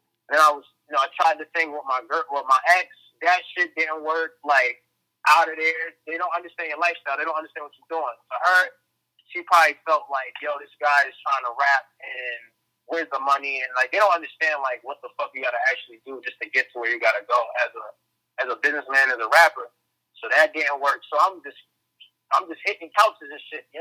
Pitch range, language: 145-175 Hz, English